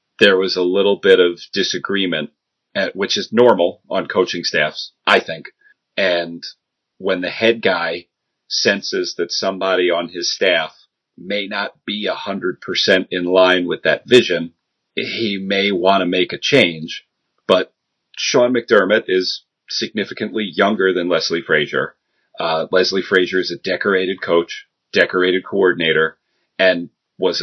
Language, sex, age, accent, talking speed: English, male, 40-59, American, 140 wpm